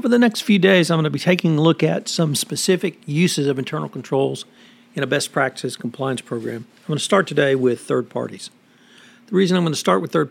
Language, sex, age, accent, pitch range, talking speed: English, male, 60-79, American, 135-190 Hz, 240 wpm